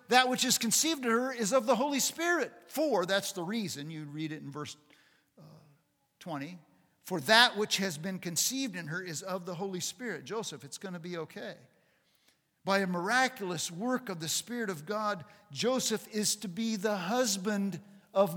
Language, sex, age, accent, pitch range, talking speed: English, male, 50-69, American, 170-235 Hz, 185 wpm